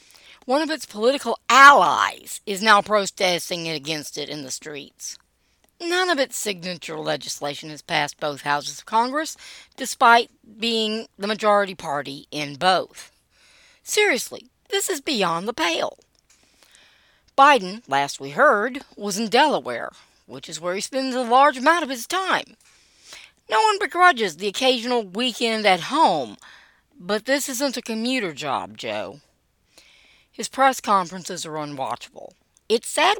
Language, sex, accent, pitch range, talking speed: English, female, American, 165-270 Hz, 140 wpm